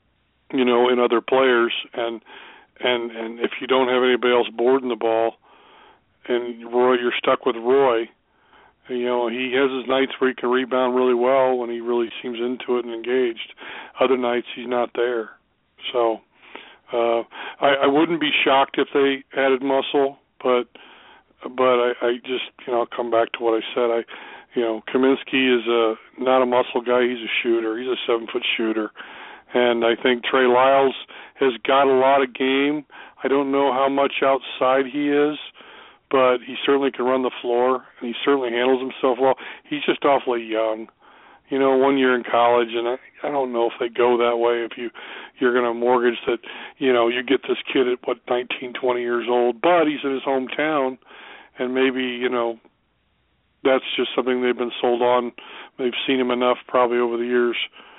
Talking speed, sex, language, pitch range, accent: 190 wpm, male, English, 120-135 Hz, American